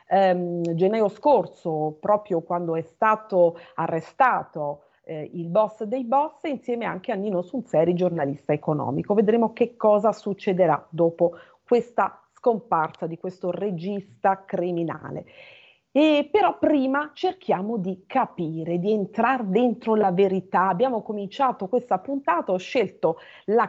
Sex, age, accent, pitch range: female, 40-59, native, 175-250 Hz